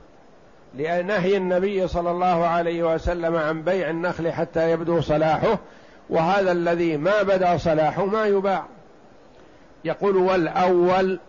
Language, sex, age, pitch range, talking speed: Arabic, male, 60-79, 160-185 Hz, 110 wpm